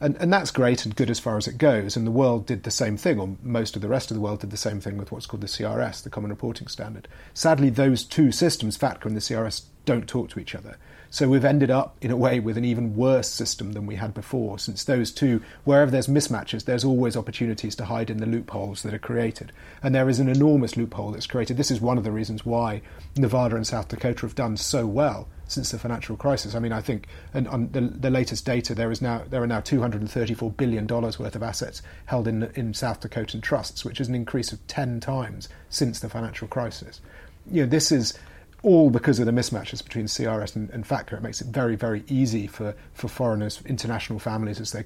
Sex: male